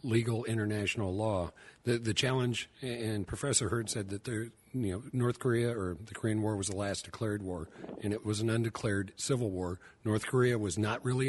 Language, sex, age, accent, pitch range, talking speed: English, male, 50-69, American, 105-125 Hz, 195 wpm